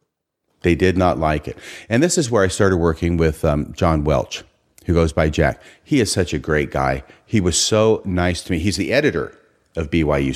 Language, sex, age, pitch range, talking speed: English, male, 40-59, 80-100 Hz, 215 wpm